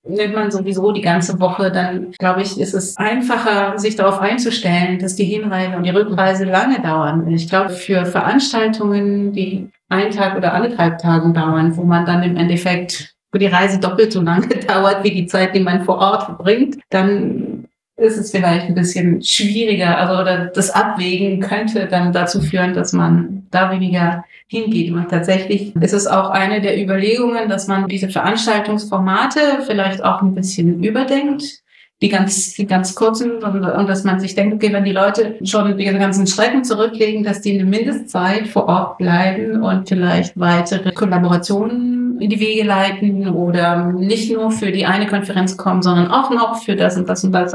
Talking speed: 180 wpm